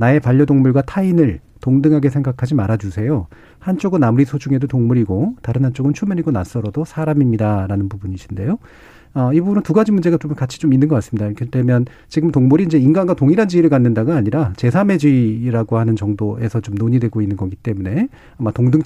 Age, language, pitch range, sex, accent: 40-59, Korean, 115-155 Hz, male, native